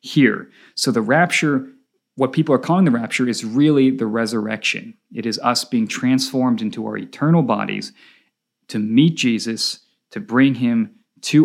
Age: 30-49